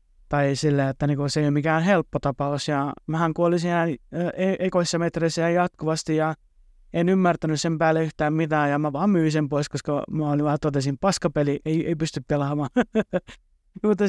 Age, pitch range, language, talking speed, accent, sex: 20-39, 145-170 Hz, Finnish, 180 wpm, native, male